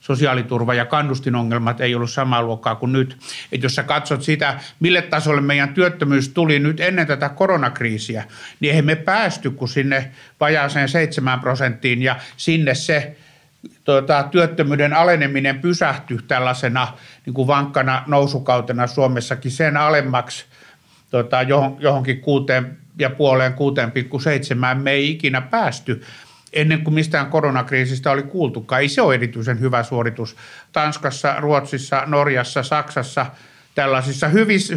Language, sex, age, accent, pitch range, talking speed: Finnish, male, 60-79, native, 130-165 Hz, 125 wpm